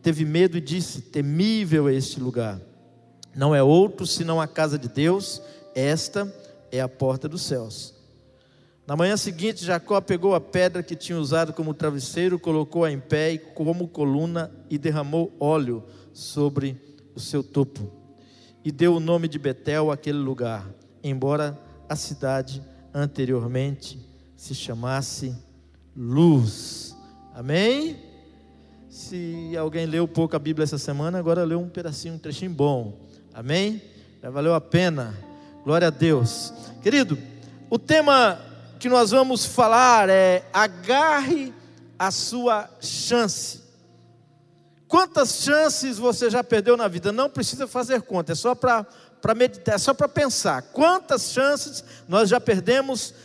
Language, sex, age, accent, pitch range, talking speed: Portuguese, male, 50-69, Brazilian, 135-200 Hz, 135 wpm